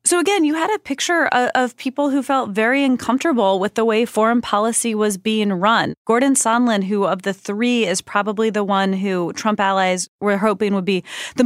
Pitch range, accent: 185-230 Hz, American